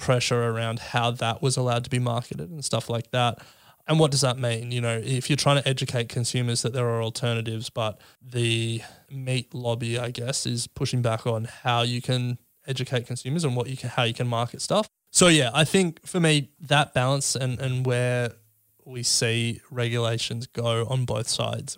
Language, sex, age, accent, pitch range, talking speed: English, male, 20-39, Australian, 120-140 Hz, 200 wpm